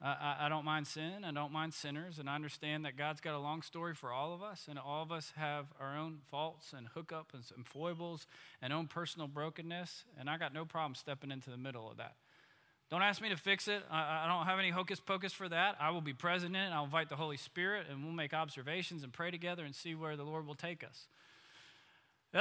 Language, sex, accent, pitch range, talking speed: English, male, American, 125-160 Hz, 240 wpm